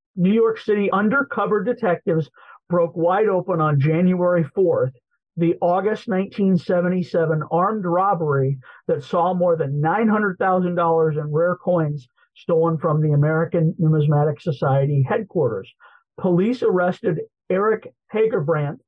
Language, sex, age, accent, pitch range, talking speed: English, male, 50-69, American, 155-195 Hz, 110 wpm